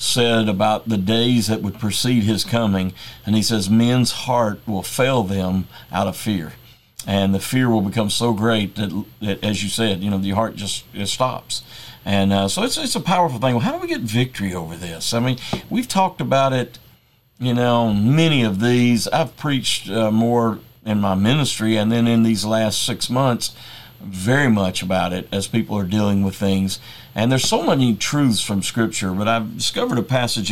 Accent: American